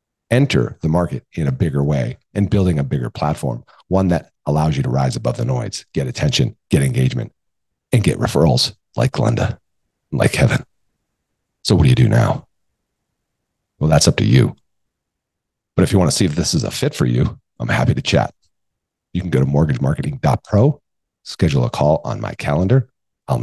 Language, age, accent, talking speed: English, 40-59, American, 185 wpm